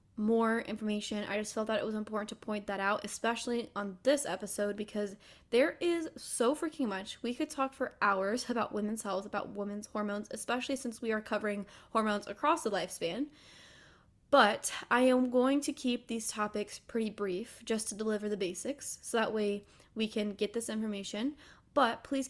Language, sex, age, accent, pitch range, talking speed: English, female, 10-29, American, 205-250 Hz, 185 wpm